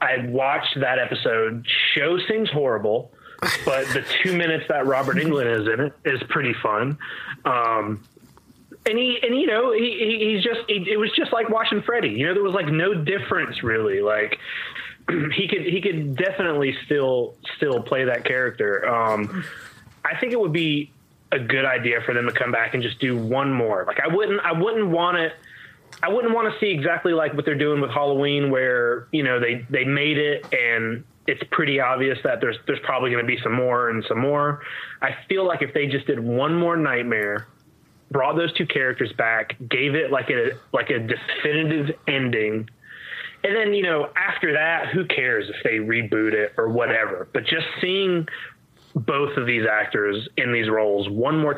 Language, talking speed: English, 190 wpm